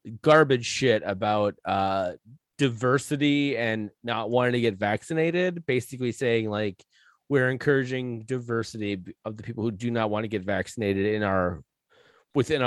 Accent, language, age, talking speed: American, English, 30-49, 140 wpm